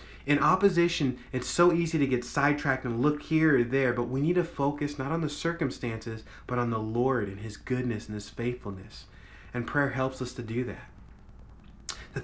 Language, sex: English, male